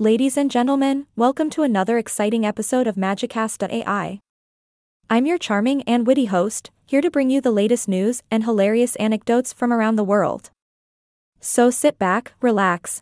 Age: 20-39